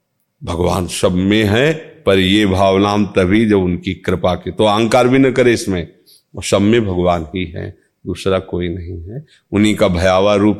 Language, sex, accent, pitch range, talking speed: Hindi, male, native, 95-135 Hz, 175 wpm